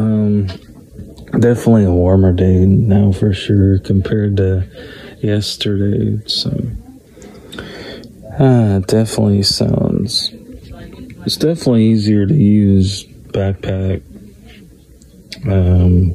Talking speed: 80 wpm